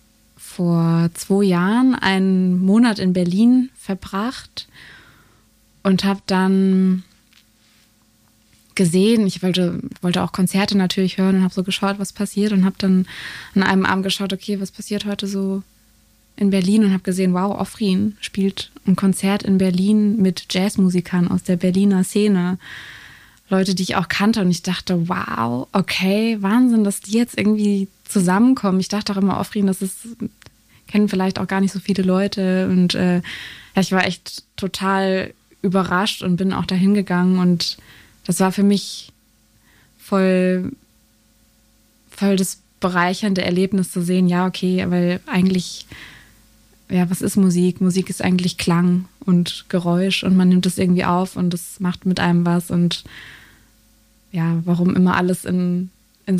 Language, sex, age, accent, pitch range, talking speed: German, female, 20-39, German, 180-195 Hz, 150 wpm